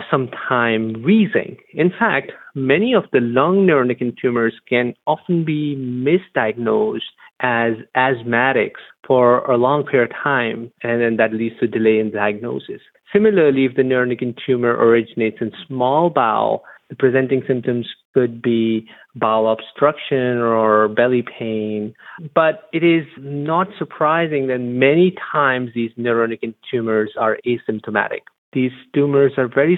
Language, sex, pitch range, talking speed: English, male, 115-140 Hz, 135 wpm